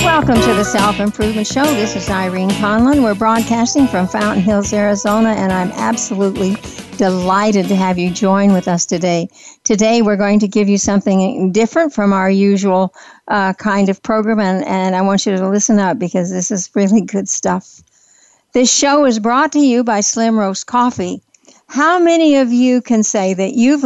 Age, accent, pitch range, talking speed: 60-79, American, 200-250 Hz, 185 wpm